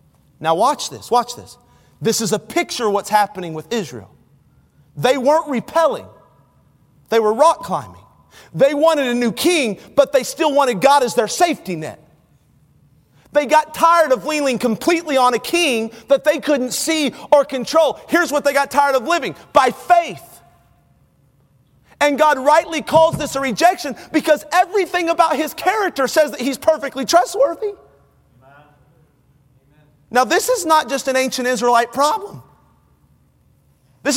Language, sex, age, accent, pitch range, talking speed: English, male, 40-59, American, 235-310 Hz, 150 wpm